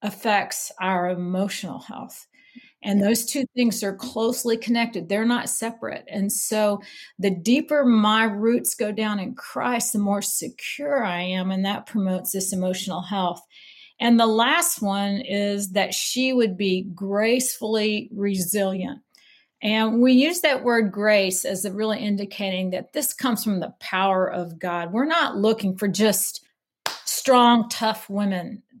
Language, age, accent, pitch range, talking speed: English, 40-59, American, 195-240 Hz, 150 wpm